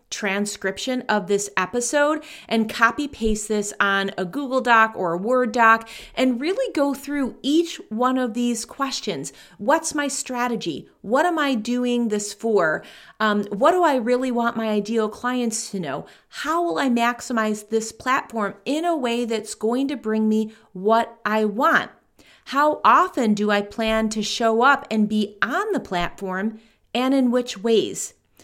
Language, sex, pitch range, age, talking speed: English, female, 205-255 Hz, 30-49, 165 wpm